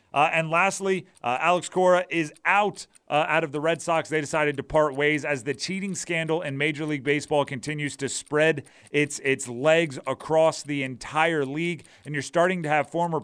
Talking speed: 195 wpm